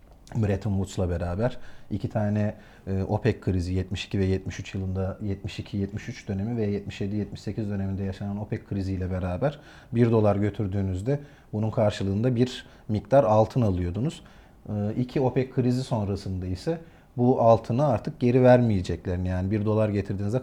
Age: 40-59